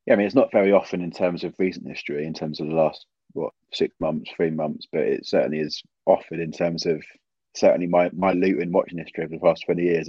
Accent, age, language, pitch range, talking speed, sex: British, 20-39, English, 85-90 Hz, 245 wpm, male